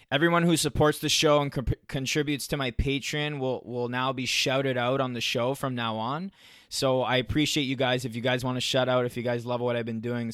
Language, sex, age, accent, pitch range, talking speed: English, male, 20-39, American, 115-130 Hz, 245 wpm